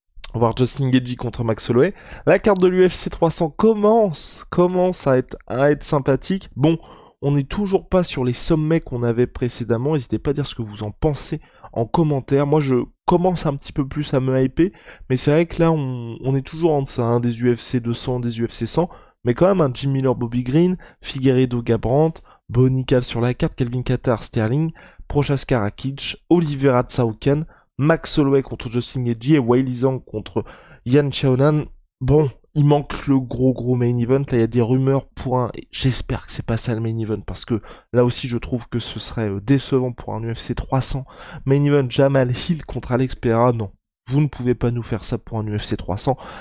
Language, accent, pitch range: French, French, 120-150 Hz